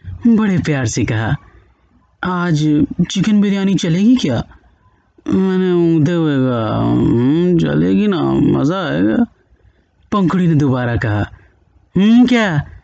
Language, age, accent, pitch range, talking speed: Hindi, 30-49, native, 135-205 Hz, 95 wpm